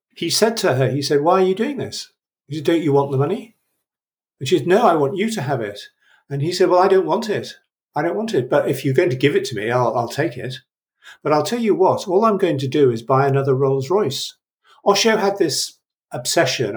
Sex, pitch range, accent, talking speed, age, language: male, 130-185 Hz, British, 260 wpm, 50-69, English